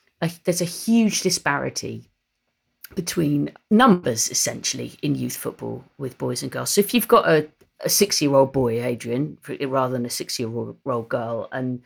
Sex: female